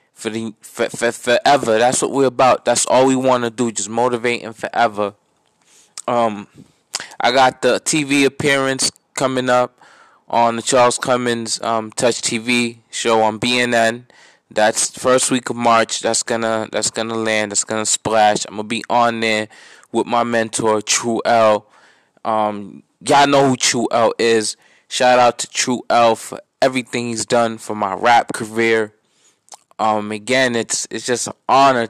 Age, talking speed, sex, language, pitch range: 20-39, 165 wpm, male, English, 110-130 Hz